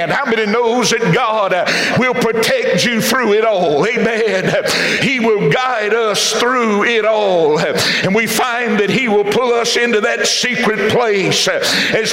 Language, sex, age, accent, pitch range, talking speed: English, male, 60-79, American, 215-245 Hz, 160 wpm